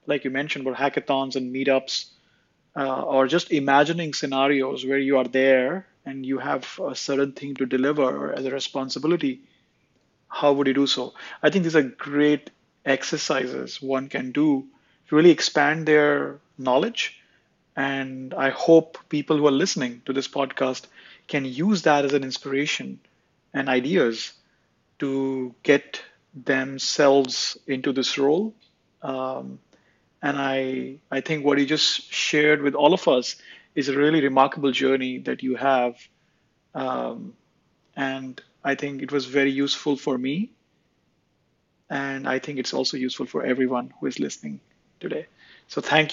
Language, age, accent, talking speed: English, 30-49, Indian, 150 wpm